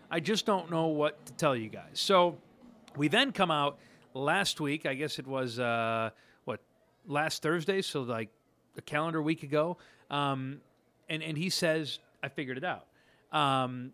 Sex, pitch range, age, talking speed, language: male, 135-170 Hz, 30-49, 170 wpm, English